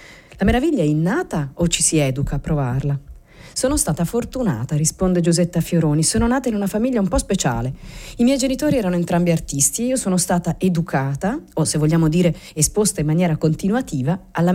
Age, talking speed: 40-59, 180 wpm